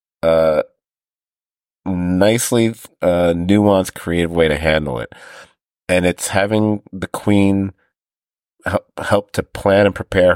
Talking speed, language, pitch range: 110 wpm, English, 80-100 Hz